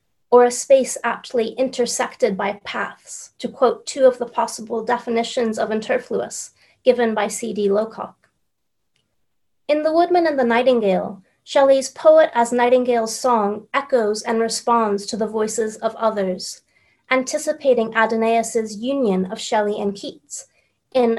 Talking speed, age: 135 wpm, 30-49